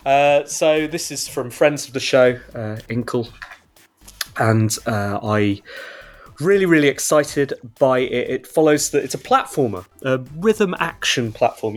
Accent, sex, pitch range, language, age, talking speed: British, male, 115-150 Hz, English, 30-49, 150 wpm